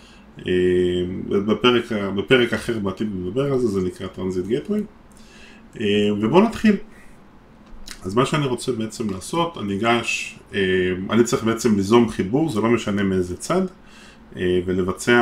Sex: male